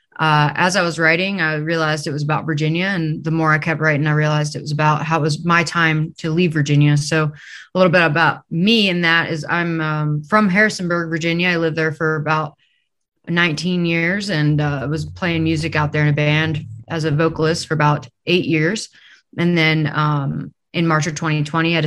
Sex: female